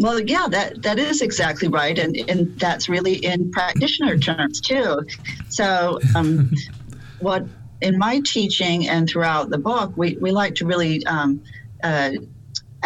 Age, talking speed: 40-59, 150 wpm